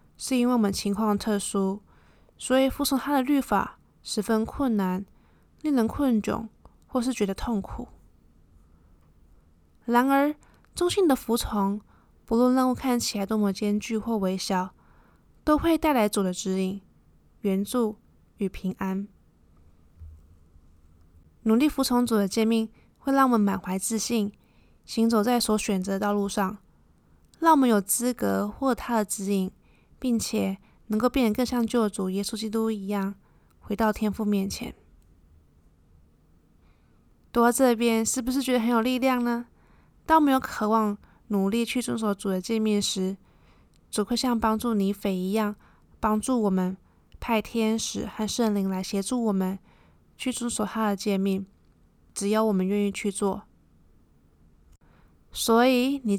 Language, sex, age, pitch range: Chinese, female, 20-39, 190-240 Hz